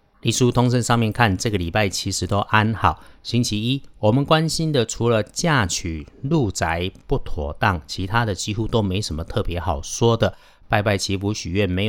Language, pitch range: Chinese, 90-120 Hz